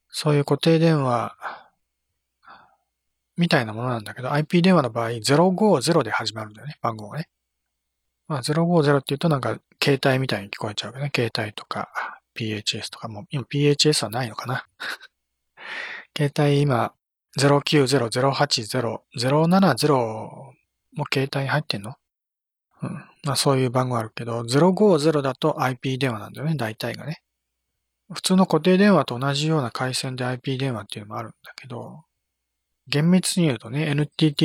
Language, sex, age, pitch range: Japanese, male, 40-59, 115-155 Hz